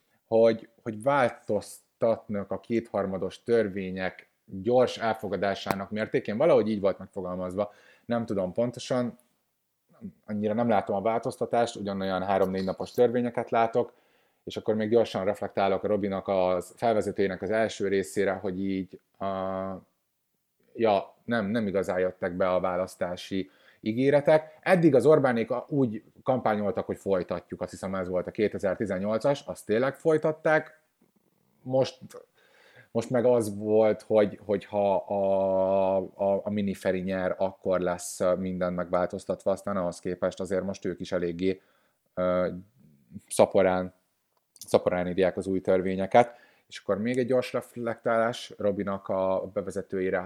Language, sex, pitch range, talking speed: Hungarian, male, 95-115 Hz, 125 wpm